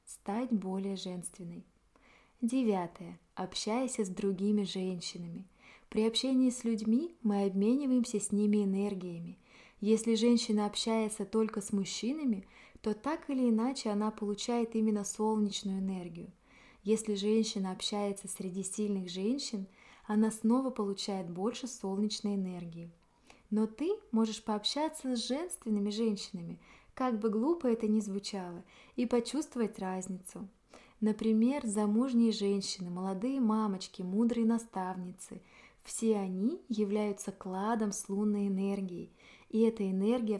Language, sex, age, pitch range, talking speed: Russian, female, 20-39, 195-230 Hz, 115 wpm